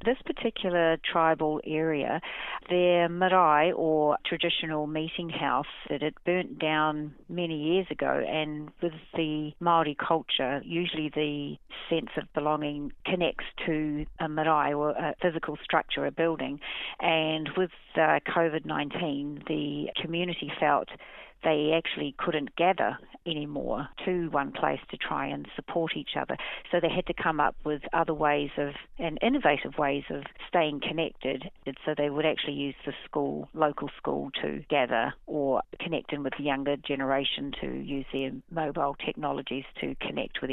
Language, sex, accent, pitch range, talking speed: English, female, Australian, 145-165 Hz, 145 wpm